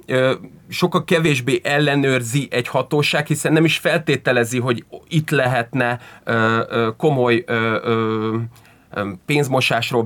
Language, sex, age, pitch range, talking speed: Hungarian, male, 30-49, 125-155 Hz, 85 wpm